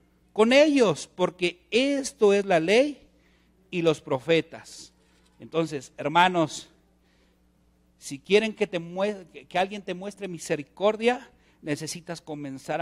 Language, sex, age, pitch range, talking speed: Spanish, male, 50-69, 145-215 Hz, 110 wpm